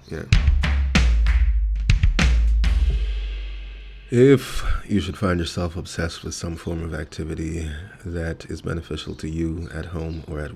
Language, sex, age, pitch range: English, male, 20-39, 75-85 Hz